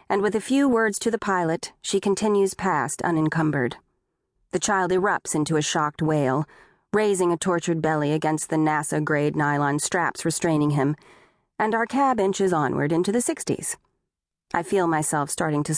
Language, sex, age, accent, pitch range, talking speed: English, female, 40-59, American, 150-195 Hz, 165 wpm